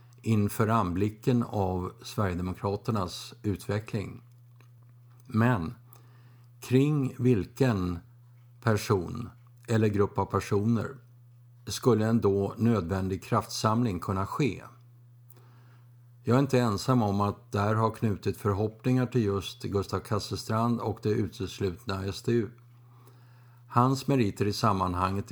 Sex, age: male, 50-69